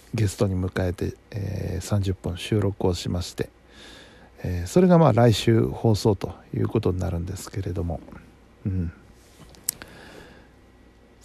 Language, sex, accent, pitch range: Japanese, male, native, 100-135 Hz